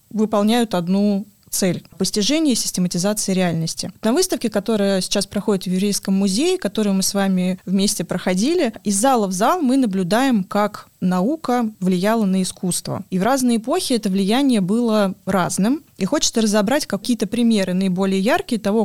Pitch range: 190-230 Hz